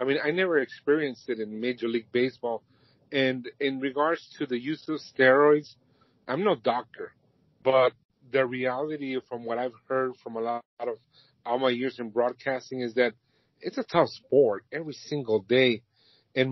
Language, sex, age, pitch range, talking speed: English, male, 40-59, 115-130 Hz, 170 wpm